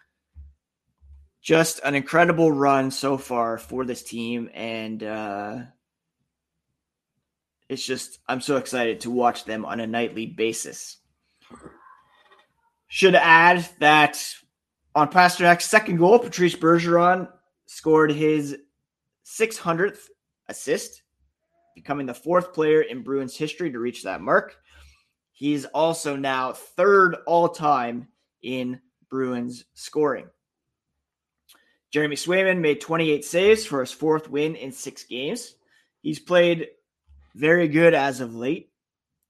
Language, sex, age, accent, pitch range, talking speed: English, male, 20-39, American, 120-165 Hz, 115 wpm